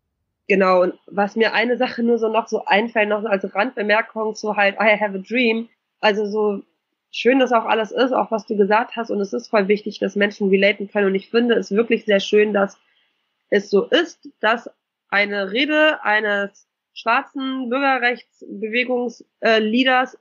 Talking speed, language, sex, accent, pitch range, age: 170 wpm, German, female, German, 205-235 Hz, 20-39